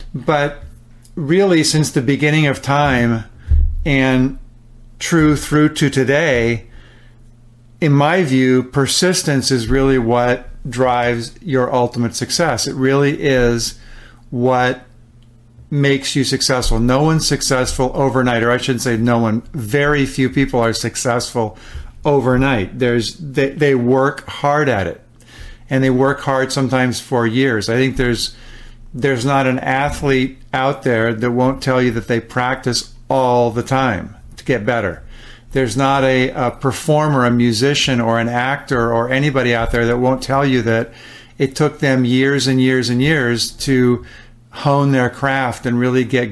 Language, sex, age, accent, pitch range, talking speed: English, male, 50-69, American, 120-135 Hz, 150 wpm